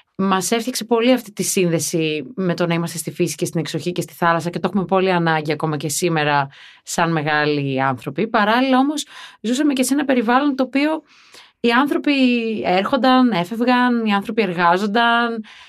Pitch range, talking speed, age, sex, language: 170-255 Hz, 170 wpm, 30-49, female, Greek